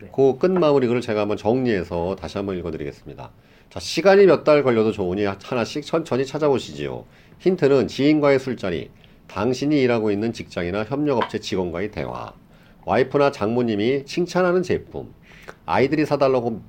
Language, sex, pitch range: Korean, male, 105-140 Hz